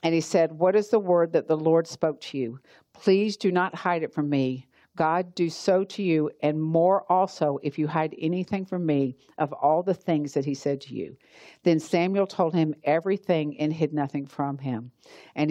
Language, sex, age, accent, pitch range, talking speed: English, female, 50-69, American, 150-190 Hz, 210 wpm